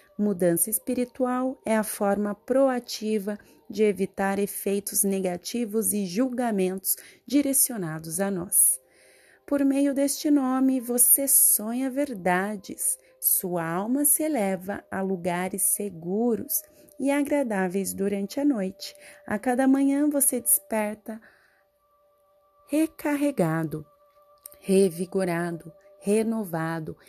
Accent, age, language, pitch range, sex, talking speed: Brazilian, 30-49, Portuguese, 180-255 Hz, female, 95 wpm